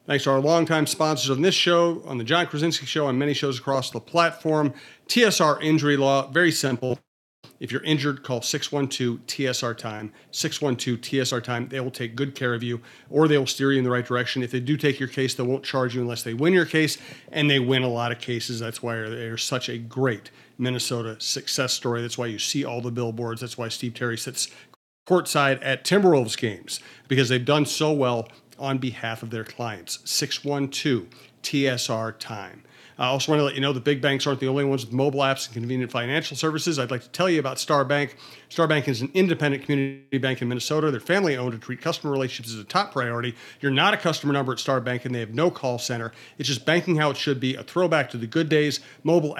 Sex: male